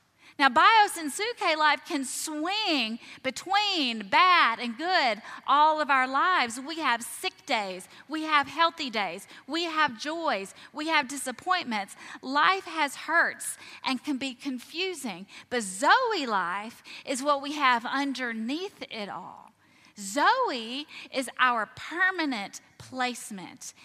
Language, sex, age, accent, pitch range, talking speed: English, female, 30-49, American, 210-295 Hz, 130 wpm